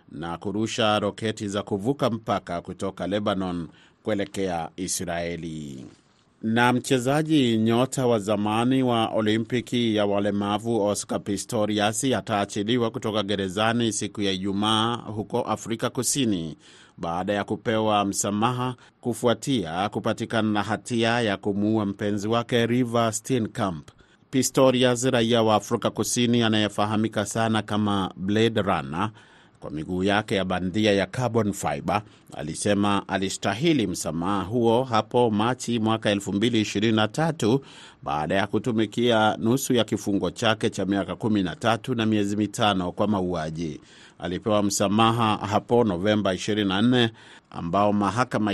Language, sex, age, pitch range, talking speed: Swahili, male, 30-49, 100-120 Hz, 115 wpm